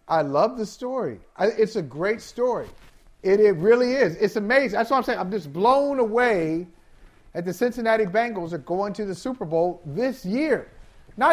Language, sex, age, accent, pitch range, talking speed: English, male, 40-59, American, 175-235 Hz, 185 wpm